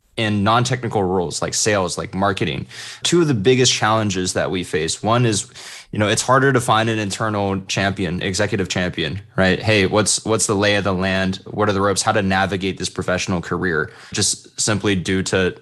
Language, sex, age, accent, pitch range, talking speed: English, male, 20-39, American, 95-110 Hz, 195 wpm